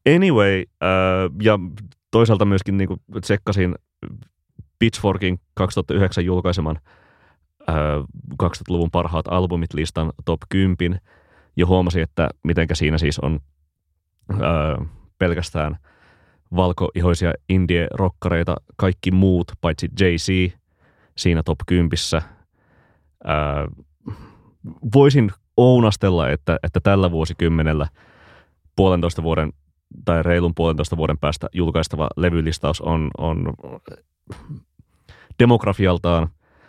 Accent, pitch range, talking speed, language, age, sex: native, 80-95 Hz, 85 wpm, Finnish, 30-49, male